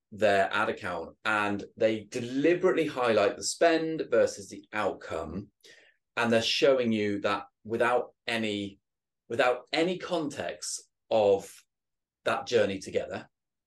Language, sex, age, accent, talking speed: English, male, 30-49, British, 115 wpm